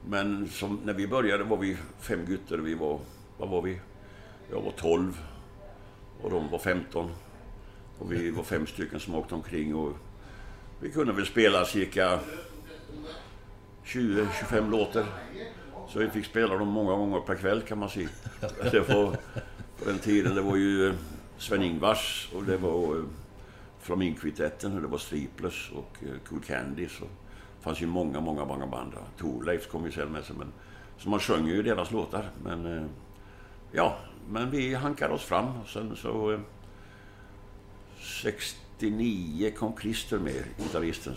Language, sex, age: English, male, 60-79